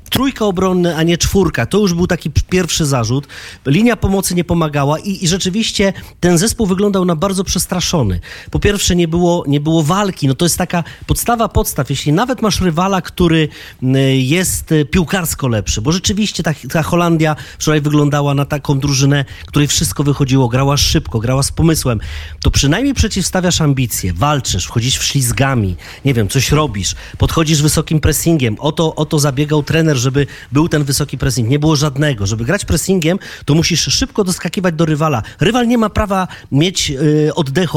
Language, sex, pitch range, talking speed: Polish, male, 135-180 Hz, 165 wpm